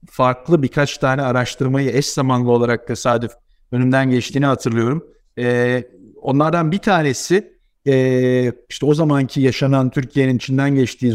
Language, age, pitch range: Turkish, 50-69, 130-165 Hz